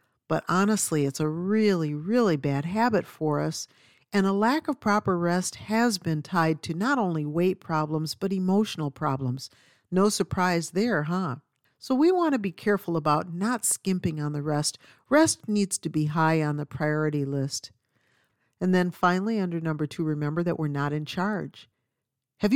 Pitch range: 150-200 Hz